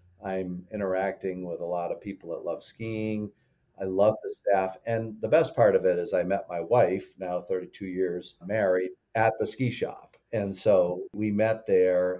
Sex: male